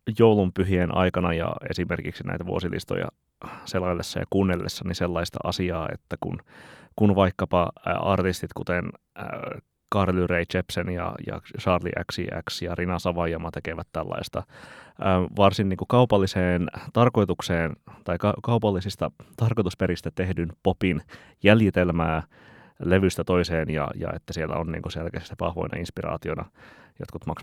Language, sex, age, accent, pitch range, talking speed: Finnish, male, 30-49, native, 80-95 Hz, 120 wpm